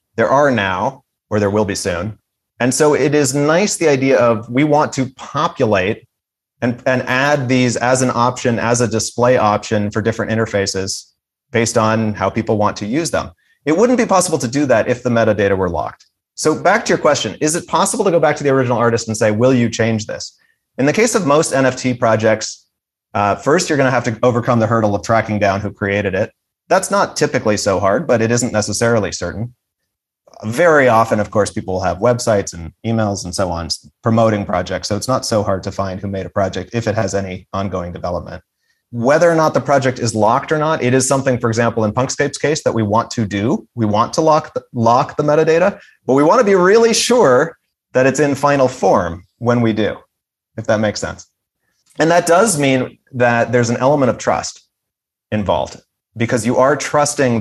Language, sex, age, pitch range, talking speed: English, male, 30-49, 105-135 Hz, 215 wpm